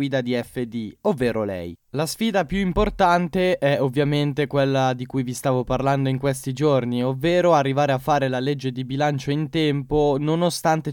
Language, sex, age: Italian, male, 10-29